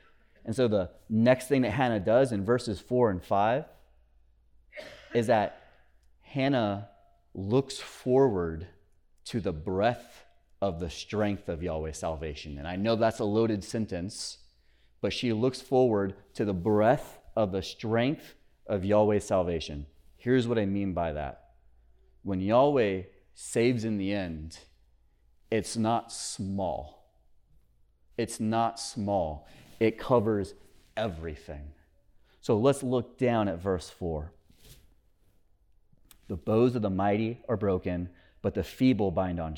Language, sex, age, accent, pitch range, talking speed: English, male, 30-49, American, 80-115 Hz, 130 wpm